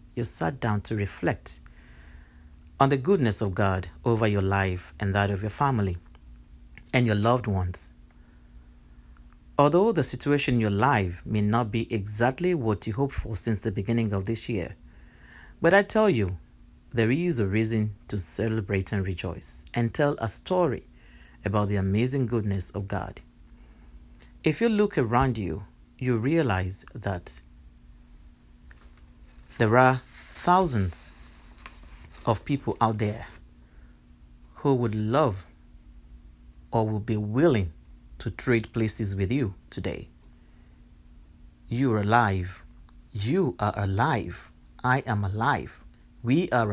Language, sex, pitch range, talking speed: English, male, 80-120 Hz, 130 wpm